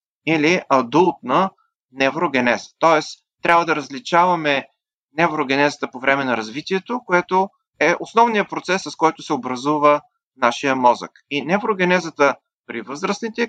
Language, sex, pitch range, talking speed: Bulgarian, male, 135-175 Hz, 115 wpm